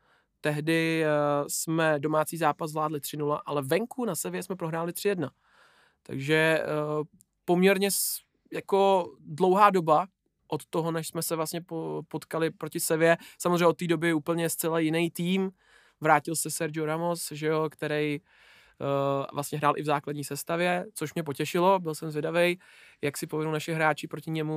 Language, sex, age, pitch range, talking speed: Czech, male, 20-39, 155-180 Hz, 150 wpm